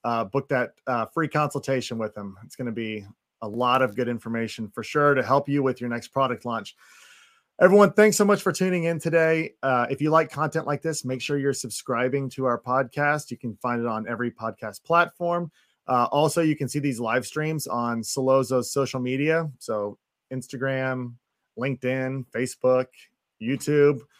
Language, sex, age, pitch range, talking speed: English, male, 30-49, 125-145 Hz, 180 wpm